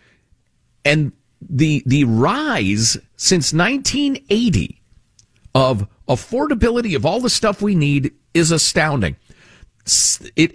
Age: 50-69